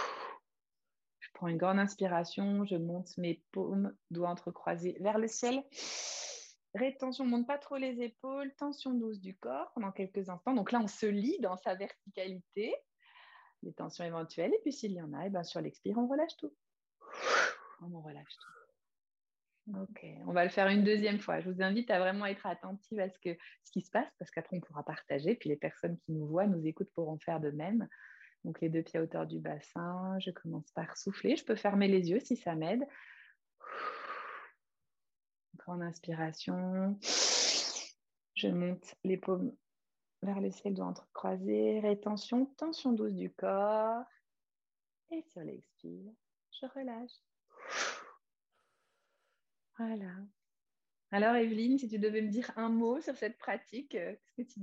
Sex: female